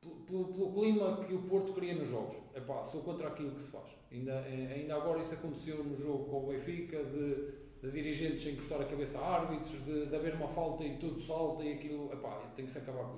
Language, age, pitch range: Portuguese, 20-39, 130-160 Hz